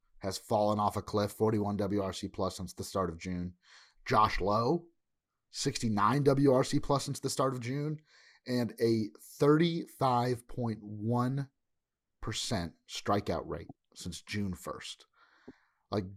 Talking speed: 120 wpm